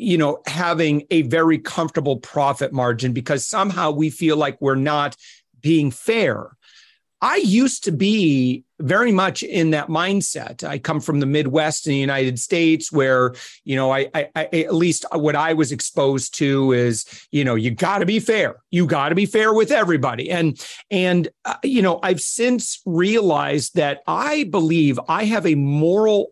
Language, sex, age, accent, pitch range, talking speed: English, male, 40-59, American, 140-185 Hz, 180 wpm